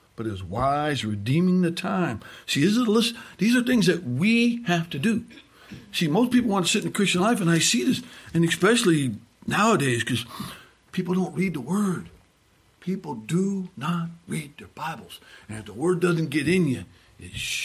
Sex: male